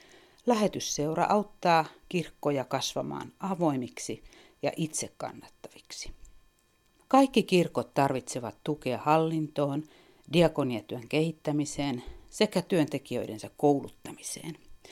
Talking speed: 70 wpm